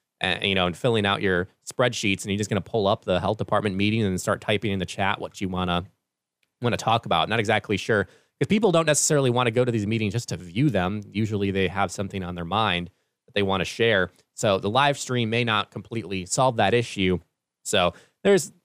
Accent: American